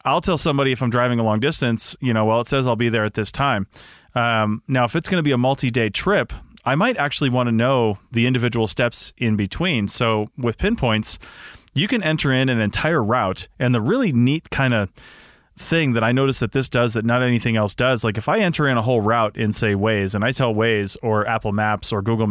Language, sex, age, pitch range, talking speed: English, male, 30-49, 110-135 Hz, 240 wpm